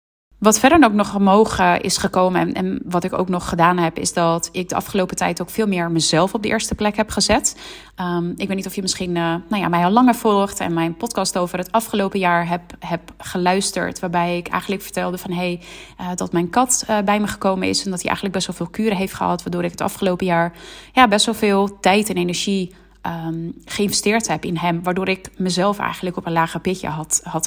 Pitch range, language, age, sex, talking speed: 175-205 Hz, Dutch, 30-49, female, 235 wpm